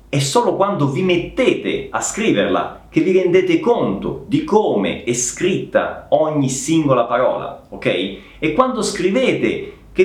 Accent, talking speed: native, 135 wpm